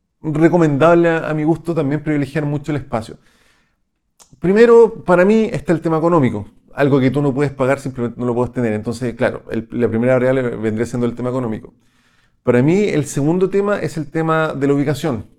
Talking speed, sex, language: 195 wpm, male, Spanish